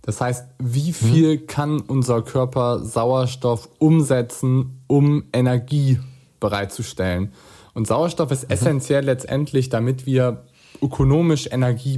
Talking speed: 105 wpm